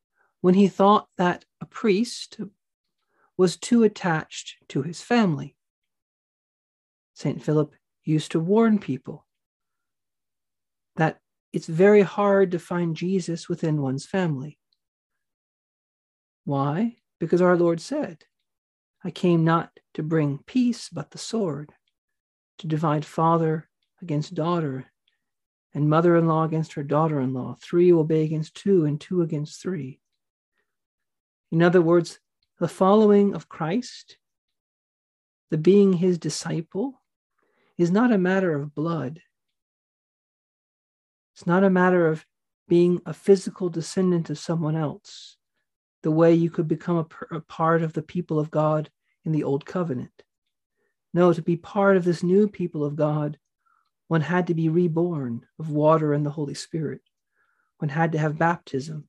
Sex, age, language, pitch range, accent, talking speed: male, 50-69, English, 155-185 Hz, American, 135 wpm